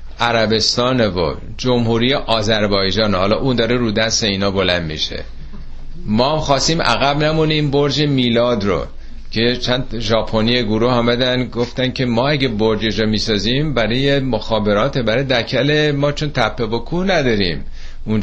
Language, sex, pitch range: Persian, male, 110-145 Hz